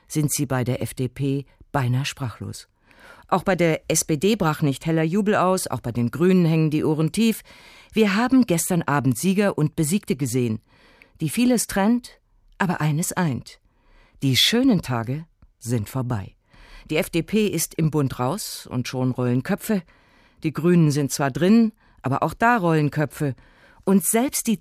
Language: German